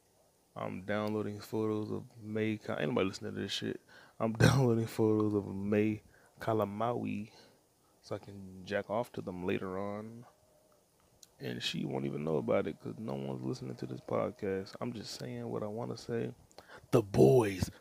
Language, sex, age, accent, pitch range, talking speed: English, male, 20-39, American, 95-115 Hz, 170 wpm